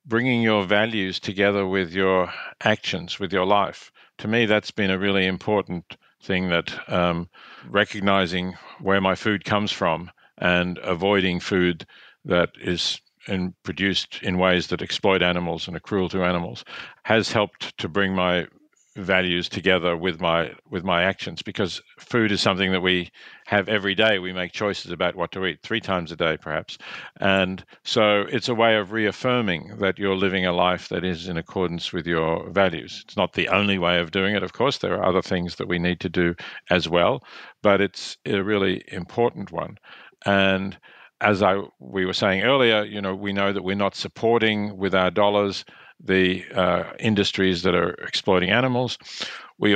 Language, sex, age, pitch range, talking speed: English, male, 50-69, 90-105 Hz, 175 wpm